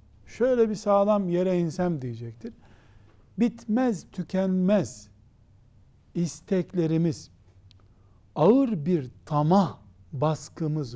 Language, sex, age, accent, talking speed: Turkish, male, 60-79, native, 70 wpm